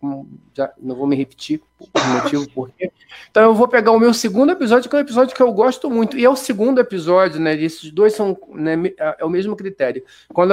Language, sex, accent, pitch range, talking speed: Portuguese, male, Brazilian, 145-195 Hz, 220 wpm